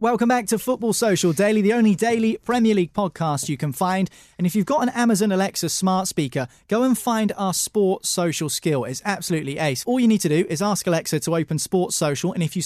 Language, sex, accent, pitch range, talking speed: English, male, British, 150-200 Hz, 230 wpm